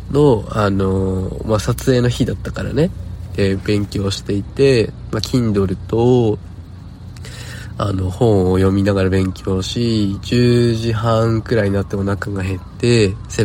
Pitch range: 95-115 Hz